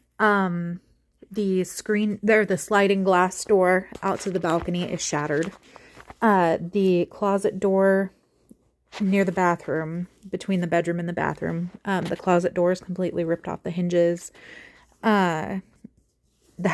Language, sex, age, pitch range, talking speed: English, female, 30-49, 170-200 Hz, 140 wpm